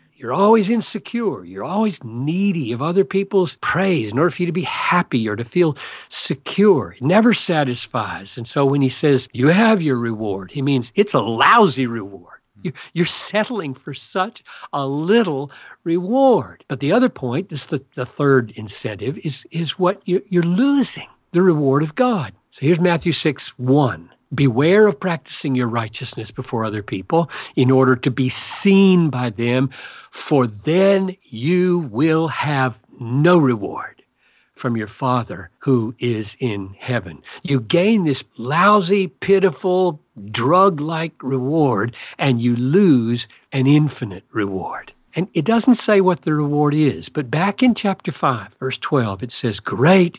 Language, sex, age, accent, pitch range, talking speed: English, male, 50-69, American, 125-180 Hz, 155 wpm